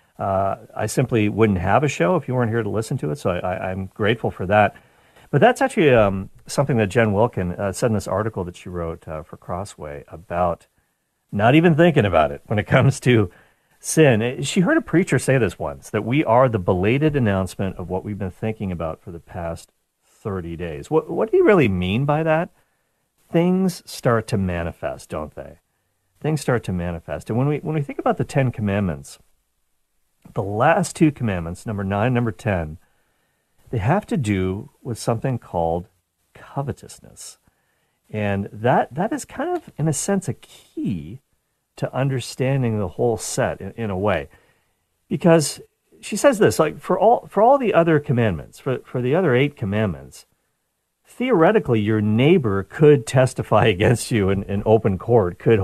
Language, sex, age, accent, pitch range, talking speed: English, male, 50-69, American, 95-135 Hz, 185 wpm